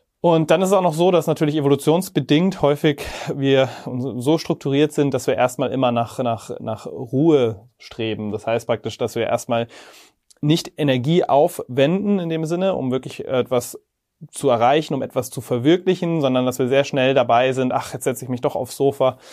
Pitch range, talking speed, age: 125-150 Hz, 185 wpm, 30-49